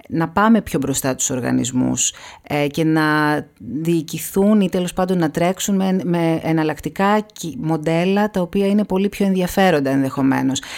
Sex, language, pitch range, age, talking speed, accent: female, Greek, 140-170 Hz, 40-59, 145 wpm, native